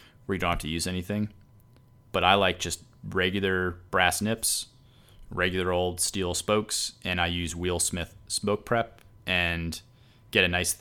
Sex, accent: male, American